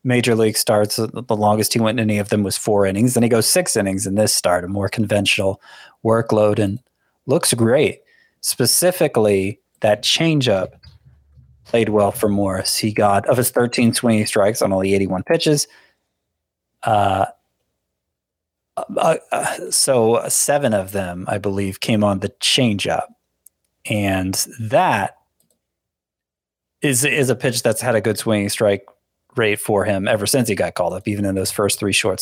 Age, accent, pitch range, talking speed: 30-49, American, 100-120 Hz, 160 wpm